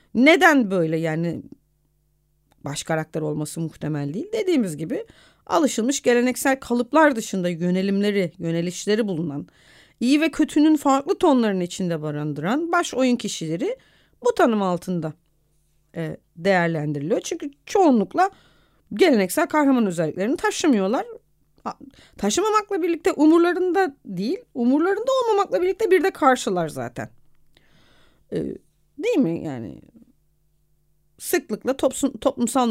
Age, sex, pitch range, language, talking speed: 40-59, female, 170-275 Hz, Turkish, 105 wpm